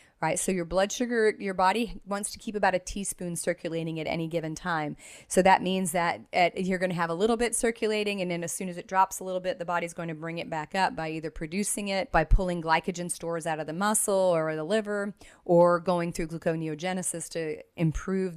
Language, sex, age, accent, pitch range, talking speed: English, female, 30-49, American, 165-205 Hz, 230 wpm